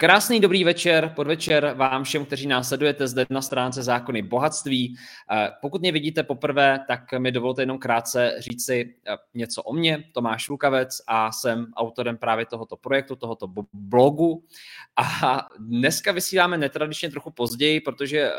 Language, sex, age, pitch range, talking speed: Czech, male, 20-39, 120-150 Hz, 145 wpm